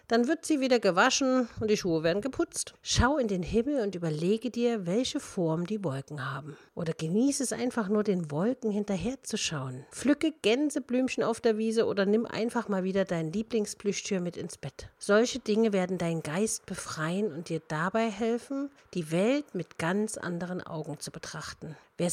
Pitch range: 170-225 Hz